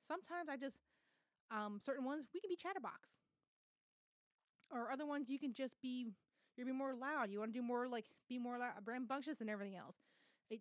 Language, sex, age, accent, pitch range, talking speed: English, female, 20-39, American, 210-265 Hz, 200 wpm